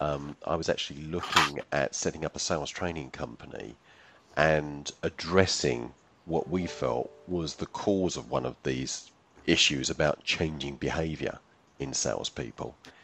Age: 40-59